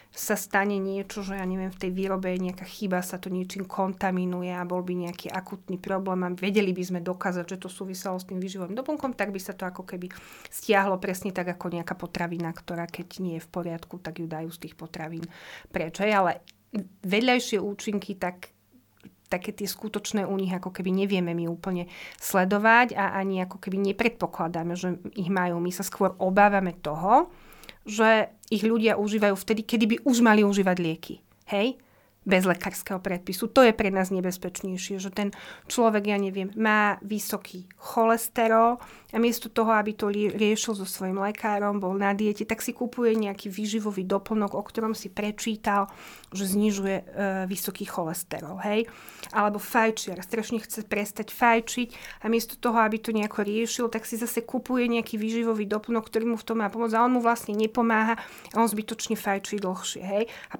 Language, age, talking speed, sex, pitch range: Slovak, 30-49, 180 wpm, female, 185-220 Hz